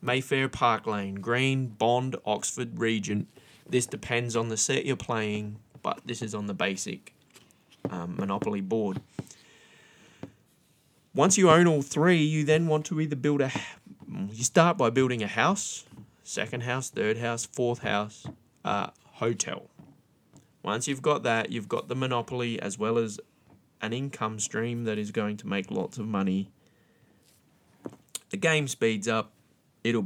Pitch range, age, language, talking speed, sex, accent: 115-165 Hz, 20-39, English, 150 wpm, male, Australian